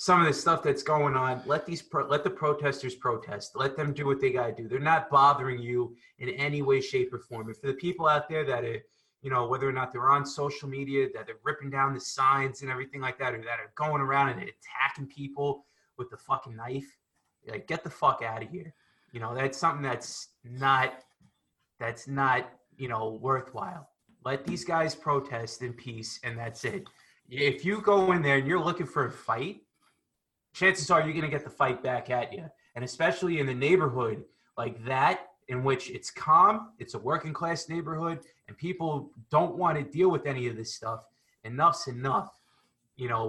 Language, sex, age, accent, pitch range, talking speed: English, male, 20-39, American, 125-155 Hz, 210 wpm